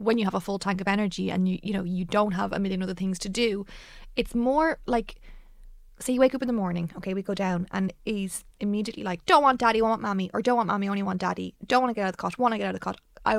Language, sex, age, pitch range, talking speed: English, female, 20-39, 185-230 Hz, 305 wpm